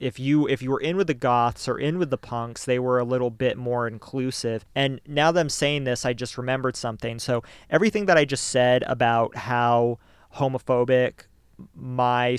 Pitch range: 120-135 Hz